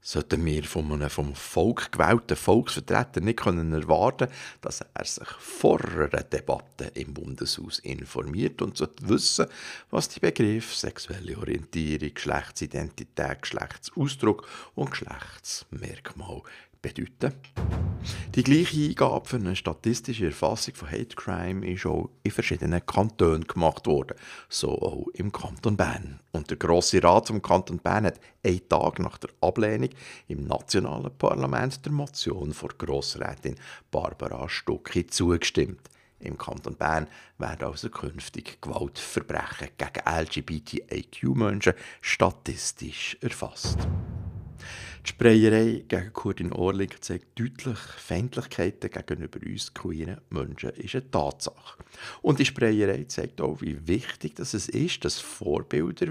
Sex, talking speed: male, 125 wpm